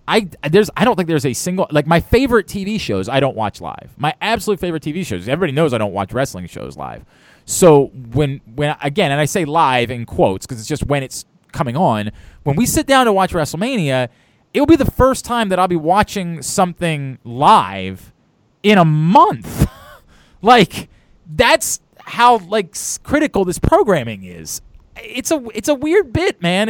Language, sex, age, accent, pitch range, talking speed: English, male, 20-39, American, 130-205 Hz, 190 wpm